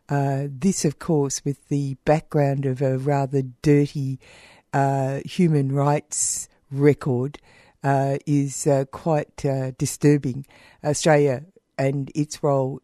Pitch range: 140-160 Hz